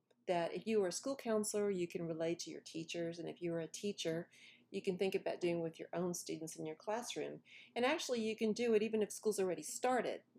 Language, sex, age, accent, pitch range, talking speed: English, female, 40-59, American, 170-220 Hz, 235 wpm